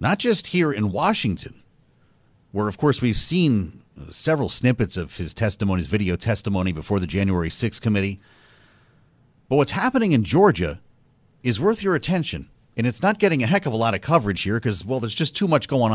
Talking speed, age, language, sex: 190 wpm, 40-59, English, male